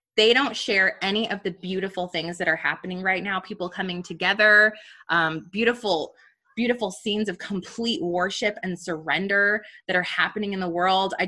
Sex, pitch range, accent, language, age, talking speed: female, 180-255 Hz, American, English, 20-39, 170 wpm